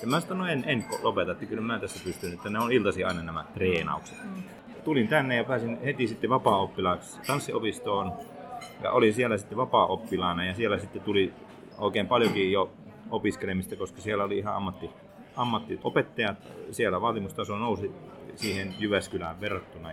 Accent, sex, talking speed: native, male, 155 wpm